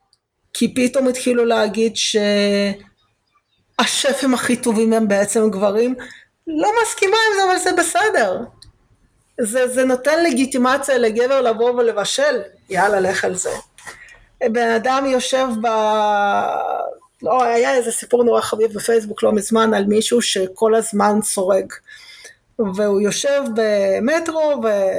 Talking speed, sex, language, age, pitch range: 120 wpm, female, Hebrew, 30-49, 215-265 Hz